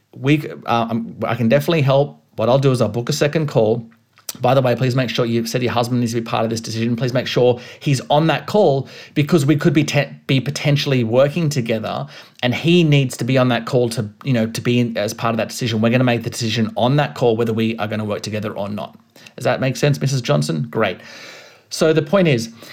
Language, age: English, 30-49